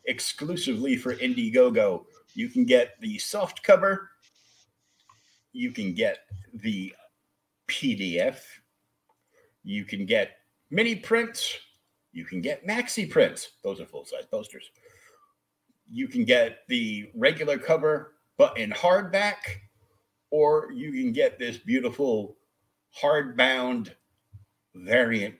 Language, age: English, 50-69